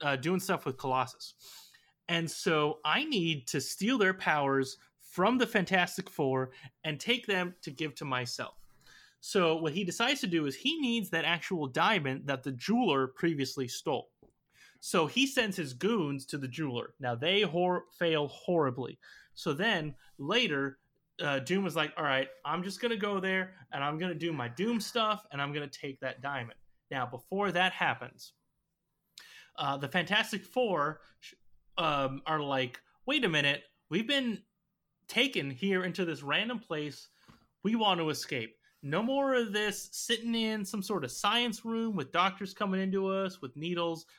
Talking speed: 175 wpm